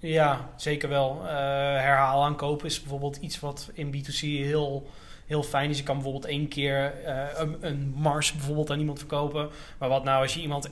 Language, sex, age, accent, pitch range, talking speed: Dutch, male, 20-39, Dutch, 140-165 Hz, 200 wpm